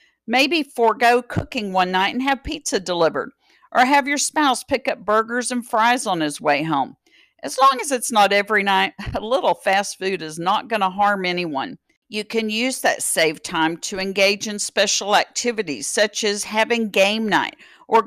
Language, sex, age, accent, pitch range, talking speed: English, female, 50-69, American, 185-250 Hz, 185 wpm